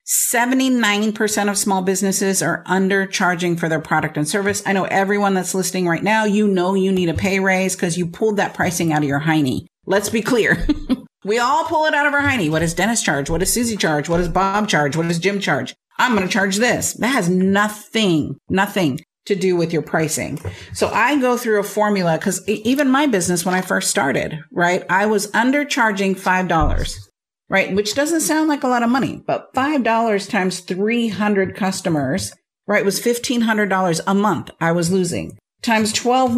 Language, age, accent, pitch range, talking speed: English, 50-69, American, 180-235 Hz, 195 wpm